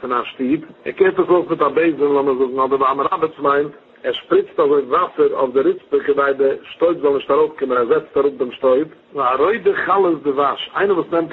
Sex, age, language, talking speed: male, 50-69, English, 200 wpm